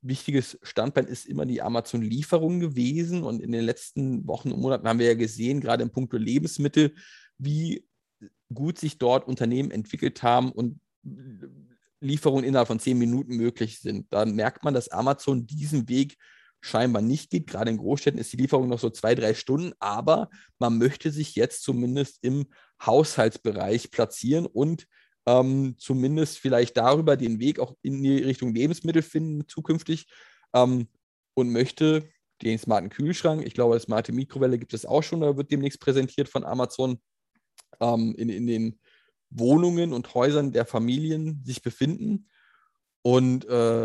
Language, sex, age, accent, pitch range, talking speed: German, male, 40-59, German, 120-145 Hz, 155 wpm